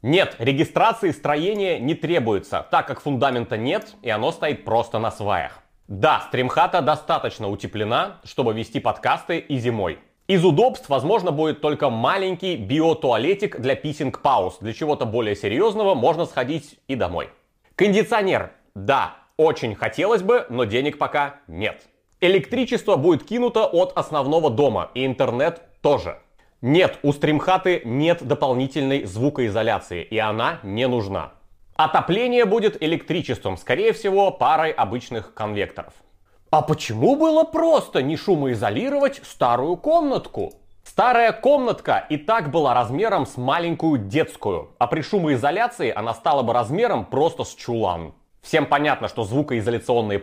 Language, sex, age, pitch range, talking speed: Bulgarian, male, 30-49, 120-190 Hz, 130 wpm